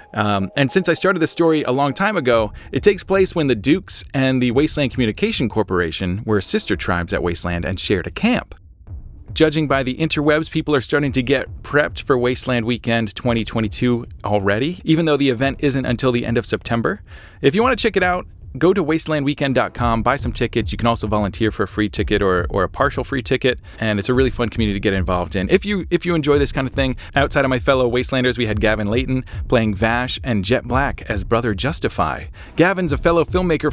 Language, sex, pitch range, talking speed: English, male, 100-140 Hz, 215 wpm